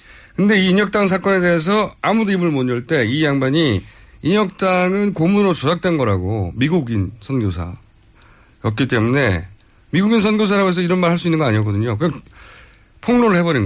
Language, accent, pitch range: Korean, native, 105-170 Hz